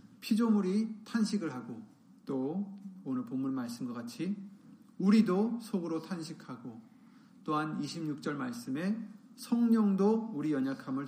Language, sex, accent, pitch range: Korean, male, native, 175-240 Hz